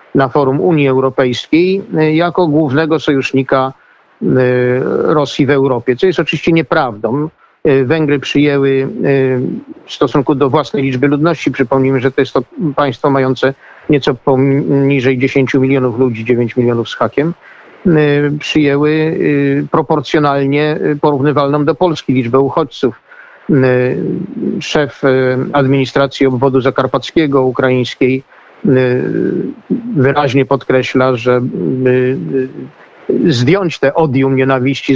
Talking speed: 100 wpm